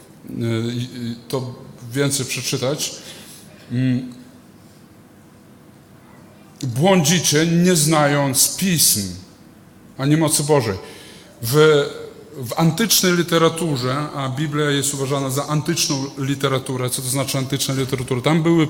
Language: Polish